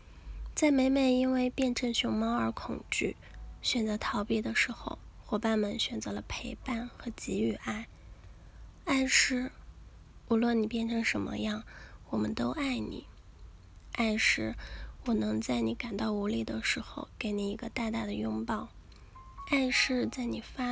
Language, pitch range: Chinese, 210-255 Hz